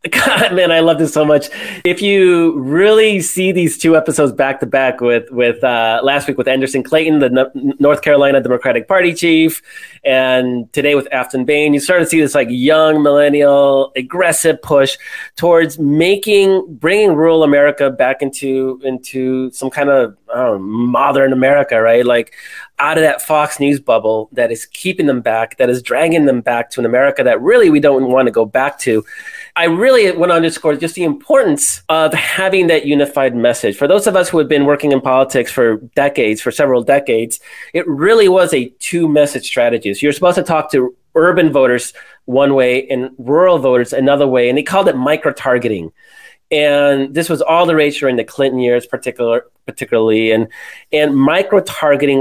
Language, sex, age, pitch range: English, male, 30-49, 130-165 Hz